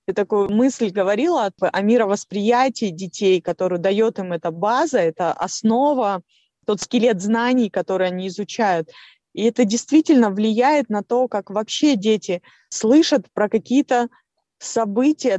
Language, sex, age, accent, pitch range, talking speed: Russian, female, 20-39, native, 195-250 Hz, 130 wpm